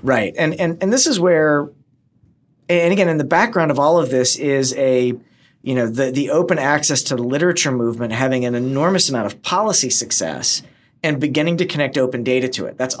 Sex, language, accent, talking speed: male, English, American, 205 wpm